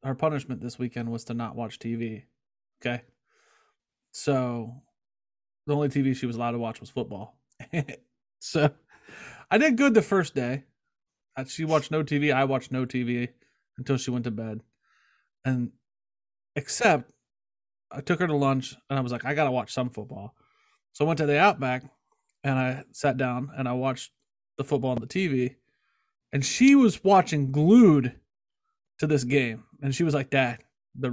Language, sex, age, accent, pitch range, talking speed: English, male, 30-49, American, 125-150 Hz, 170 wpm